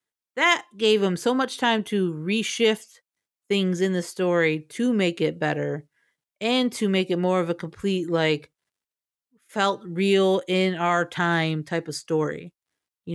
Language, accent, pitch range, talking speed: English, American, 160-195 Hz, 155 wpm